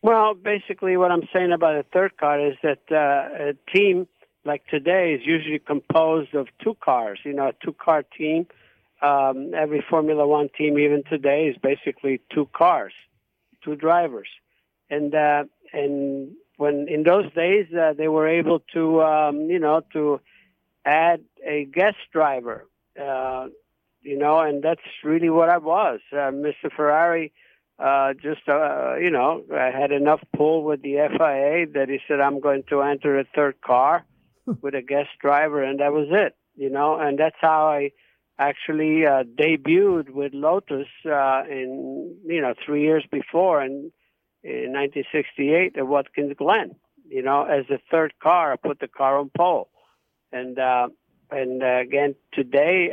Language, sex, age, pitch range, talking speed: English, male, 60-79, 140-165 Hz, 165 wpm